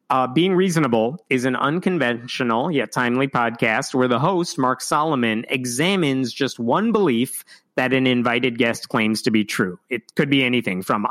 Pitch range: 120-145 Hz